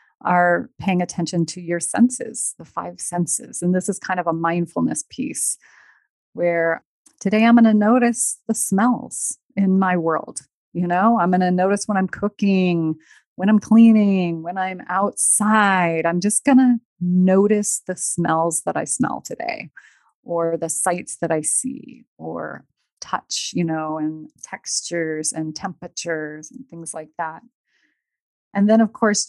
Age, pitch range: 30-49, 170-225 Hz